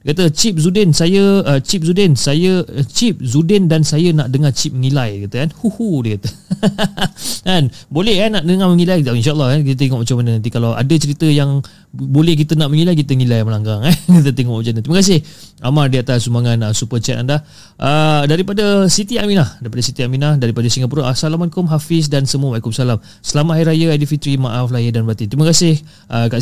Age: 30-49